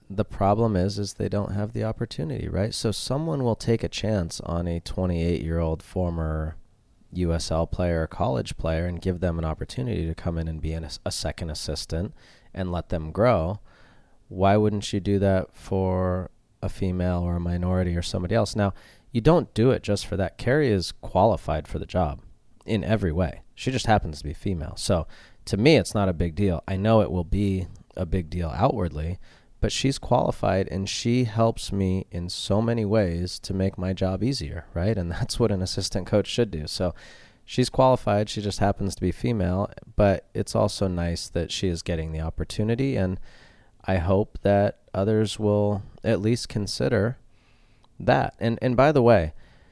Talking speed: 185 wpm